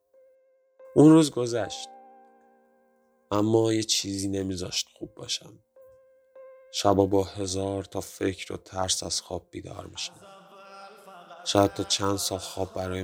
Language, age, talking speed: Persian, 30-49, 120 wpm